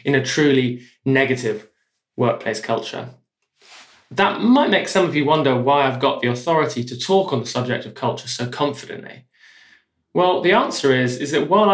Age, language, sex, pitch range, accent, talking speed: 20-39, English, male, 120-155 Hz, British, 175 wpm